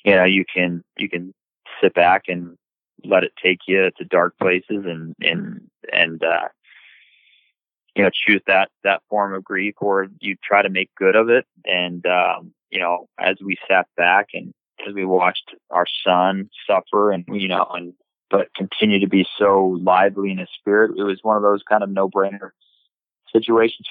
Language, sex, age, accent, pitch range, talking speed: English, male, 30-49, American, 95-110 Hz, 185 wpm